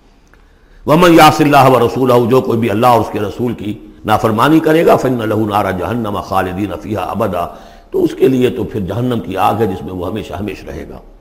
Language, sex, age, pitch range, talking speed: Urdu, male, 60-79, 105-145 Hz, 205 wpm